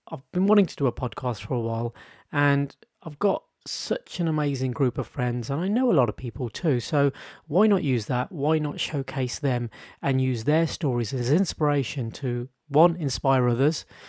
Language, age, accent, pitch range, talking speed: English, 30-49, British, 130-170 Hz, 195 wpm